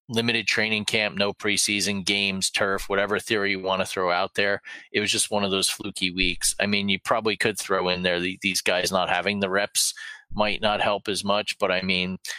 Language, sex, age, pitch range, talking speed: English, male, 40-59, 90-100 Hz, 220 wpm